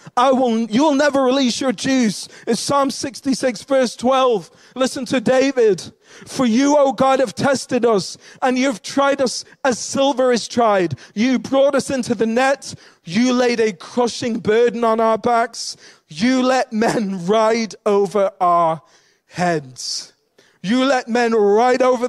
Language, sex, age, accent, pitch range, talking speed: English, male, 30-49, British, 215-255 Hz, 160 wpm